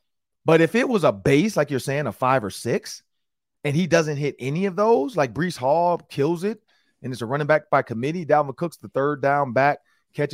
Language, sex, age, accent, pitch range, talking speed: English, male, 30-49, American, 120-185 Hz, 225 wpm